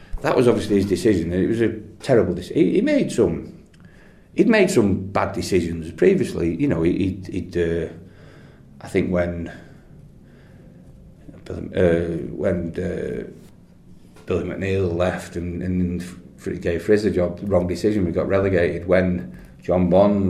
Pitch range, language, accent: 85-100 Hz, English, British